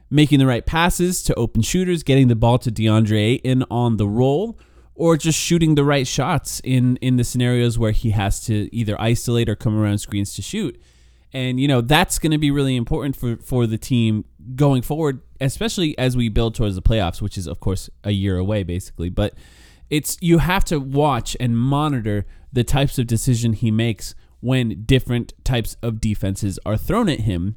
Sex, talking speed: male, 200 wpm